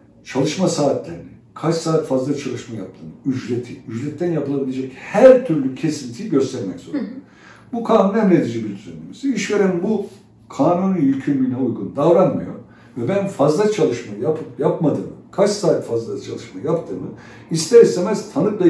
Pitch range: 130-190 Hz